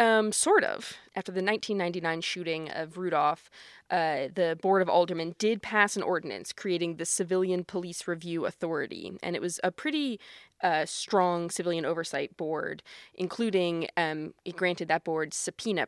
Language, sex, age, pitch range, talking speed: English, female, 20-39, 165-190 Hz, 155 wpm